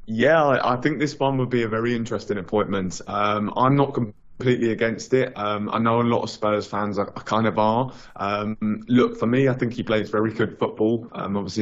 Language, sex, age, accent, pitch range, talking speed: English, male, 20-39, British, 100-110 Hz, 230 wpm